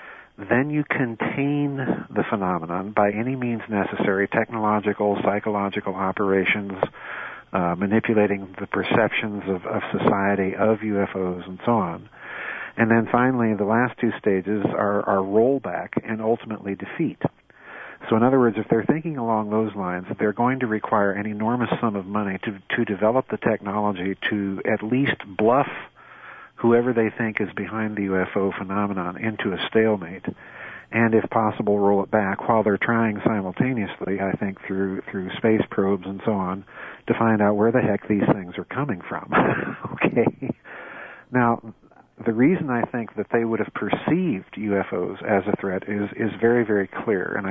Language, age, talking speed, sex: English, 50-69, 160 wpm, male